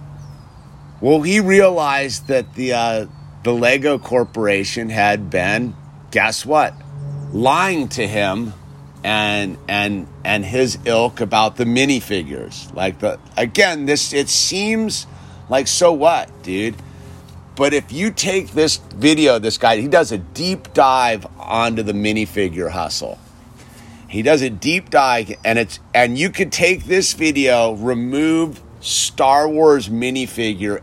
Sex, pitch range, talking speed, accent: male, 105-135 Hz, 130 wpm, American